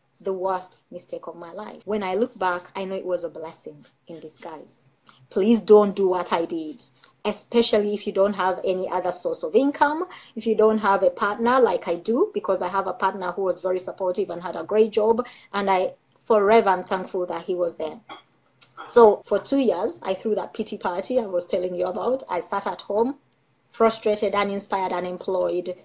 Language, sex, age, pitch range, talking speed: English, female, 20-39, 180-215 Hz, 205 wpm